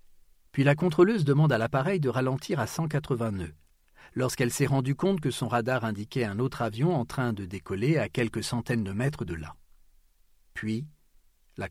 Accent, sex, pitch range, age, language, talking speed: French, male, 100-140 Hz, 40-59, French, 180 wpm